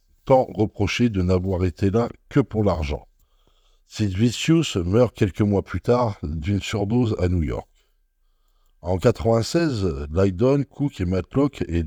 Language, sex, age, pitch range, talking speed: French, male, 60-79, 90-120 Hz, 140 wpm